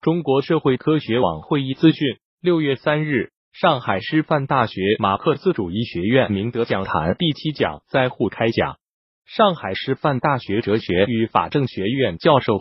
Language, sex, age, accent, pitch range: Chinese, male, 20-39, native, 110-150 Hz